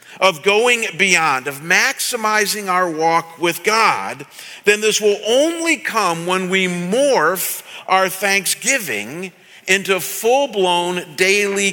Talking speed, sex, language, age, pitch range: 115 wpm, male, English, 50-69, 170-205 Hz